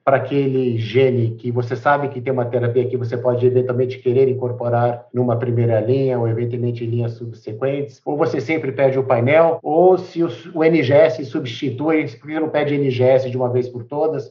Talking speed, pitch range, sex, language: 185 wpm, 120-145 Hz, male, Portuguese